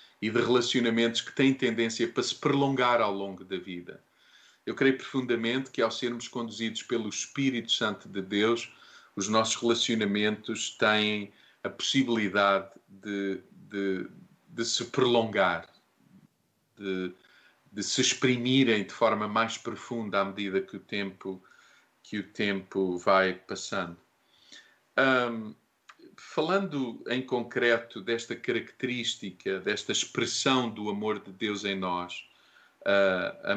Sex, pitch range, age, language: male, 100-120 Hz, 40-59, Portuguese